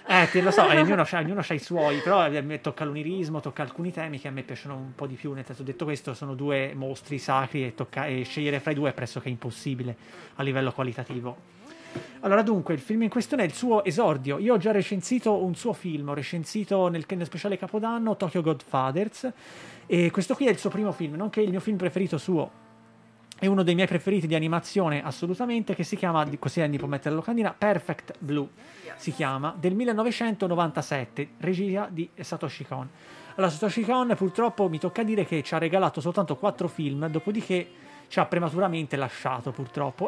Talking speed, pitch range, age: 195 wpm, 140-185 Hz, 30-49